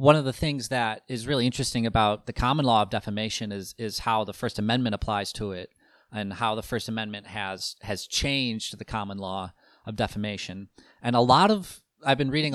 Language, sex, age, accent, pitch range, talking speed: English, male, 30-49, American, 105-130 Hz, 205 wpm